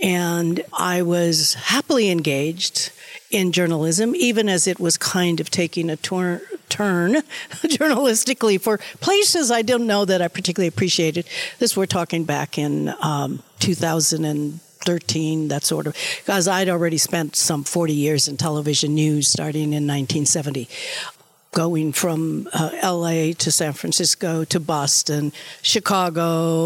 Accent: American